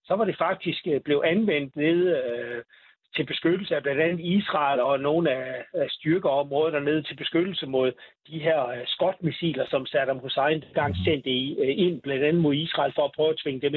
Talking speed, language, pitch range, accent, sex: 185 wpm, Danish, 135-170 Hz, native, male